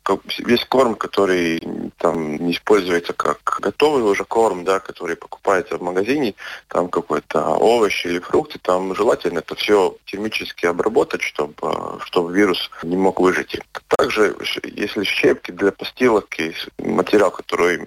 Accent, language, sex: native, Russian, male